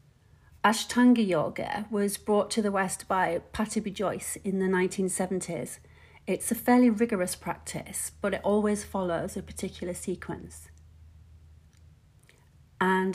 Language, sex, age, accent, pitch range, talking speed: English, female, 40-59, British, 175-205 Hz, 125 wpm